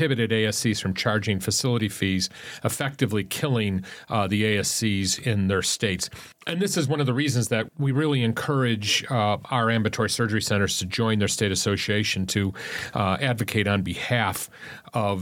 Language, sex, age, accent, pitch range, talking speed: English, male, 40-59, American, 95-120 Hz, 160 wpm